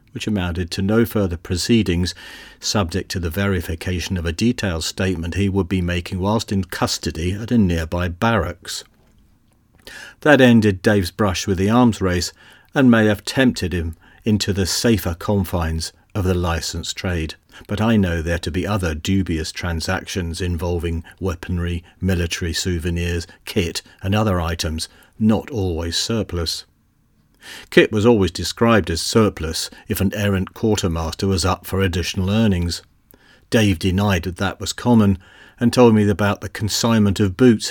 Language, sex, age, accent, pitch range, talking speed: English, male, 40-59, British, 90-105 Hz, 150 wpm